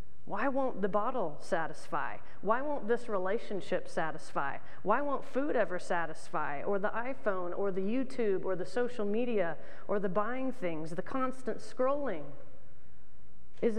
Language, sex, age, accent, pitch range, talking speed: English, female, 30-49, American, 175-230 Hz, 145 wpm